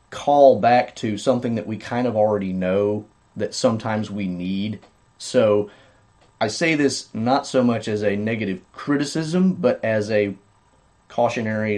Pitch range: 100-120 Hz